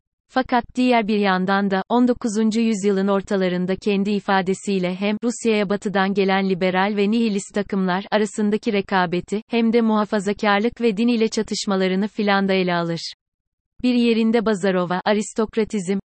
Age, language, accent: 30-49, Turkish, native